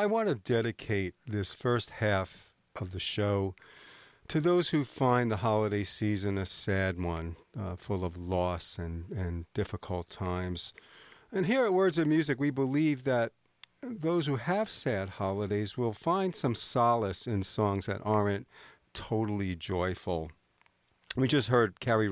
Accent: American